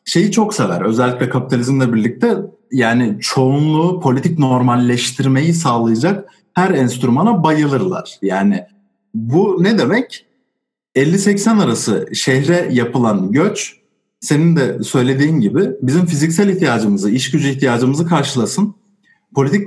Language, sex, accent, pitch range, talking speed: Turkish, male, native, 125-195 Hz, 105 wpm